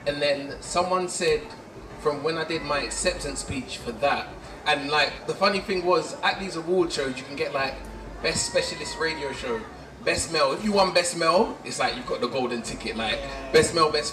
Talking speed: 210 wpm